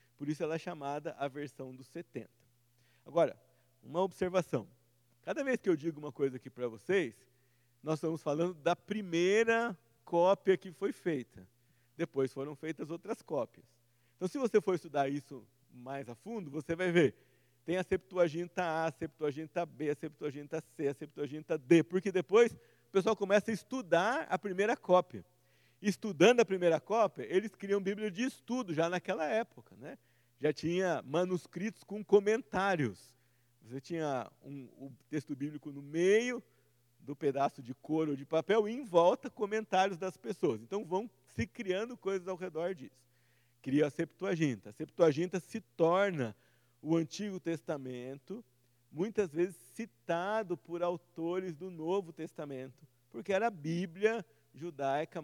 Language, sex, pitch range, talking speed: Portuguese, male, 135-185 Hz, 150 wpm